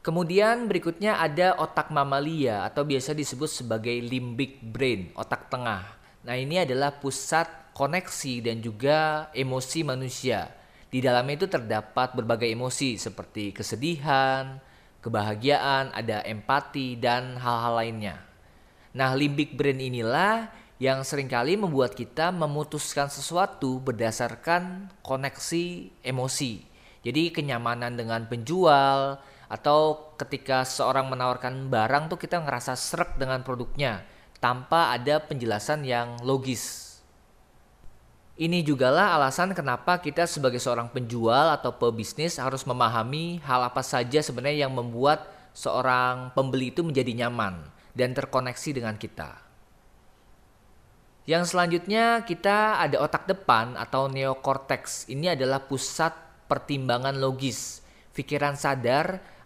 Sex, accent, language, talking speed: male, native, Indonesian, 110 wpm